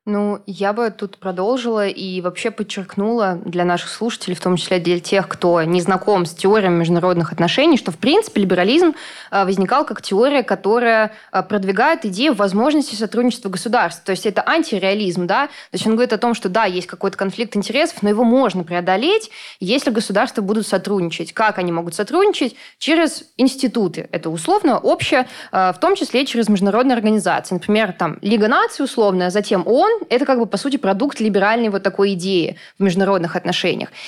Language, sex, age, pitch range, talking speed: Russian, female, 20-39, 190-240 Hz, 170 wpm